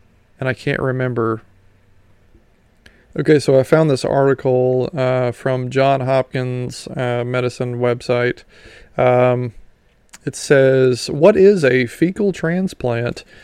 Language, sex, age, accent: English, male, 30-49, American